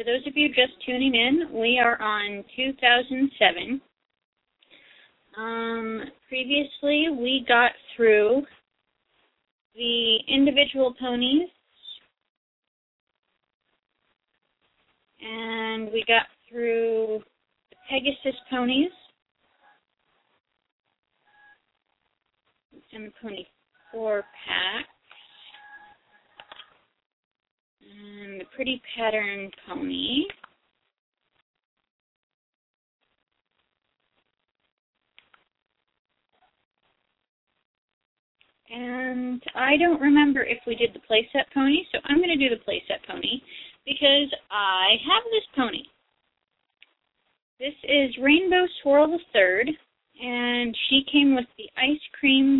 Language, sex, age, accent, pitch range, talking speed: English, female, 30-49, American, 230-285 Hz, 85 wpm